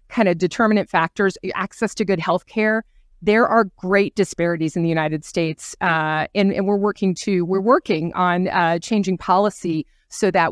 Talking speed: 170 wpm